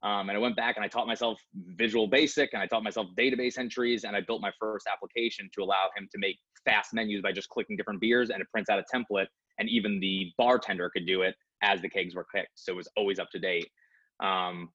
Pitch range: 105-120 Hz